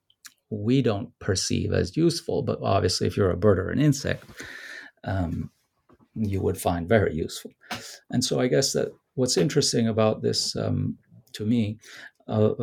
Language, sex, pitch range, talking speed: English, male, 95-115 Hz, 155 wpm